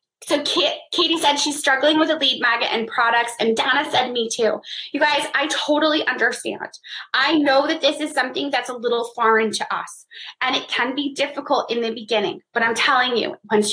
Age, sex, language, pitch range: 20-39, female, English, 240-300 Hz